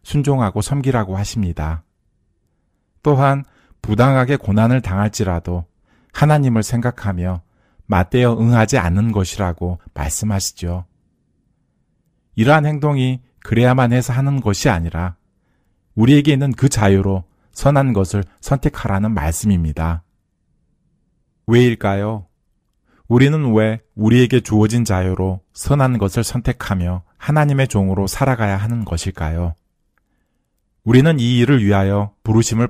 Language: Korean